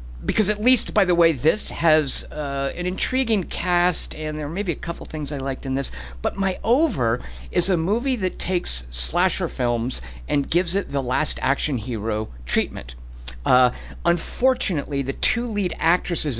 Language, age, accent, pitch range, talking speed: English, 50-69, American, 100-165 Hz, 170 wpm